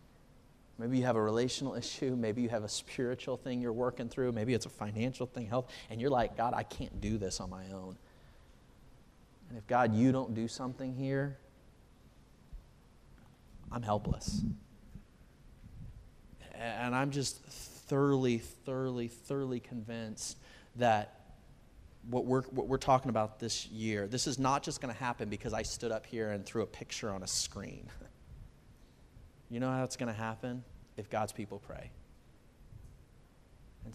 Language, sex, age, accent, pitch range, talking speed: English, male, 30-49, American, 105-130 Hz, 155 wpm